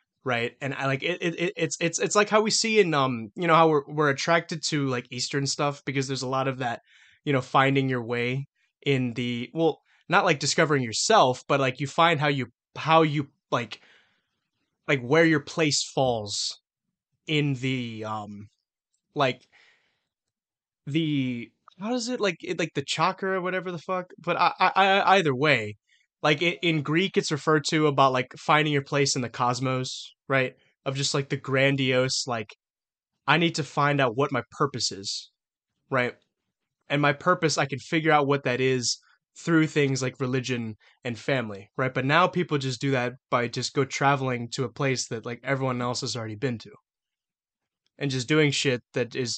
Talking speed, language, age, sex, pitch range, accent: 190 wpm, English, 20-39, male, 125-155 Hz, American